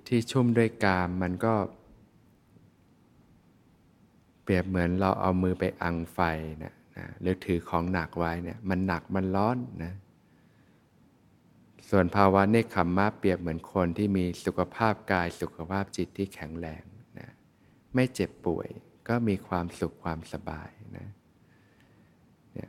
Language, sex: Thai, male